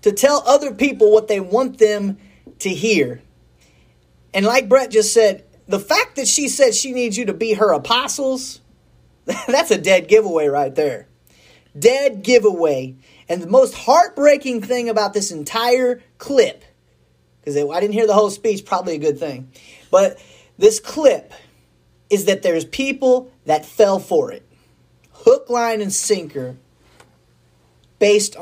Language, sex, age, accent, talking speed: English, male, 30-49, American, 150 wpm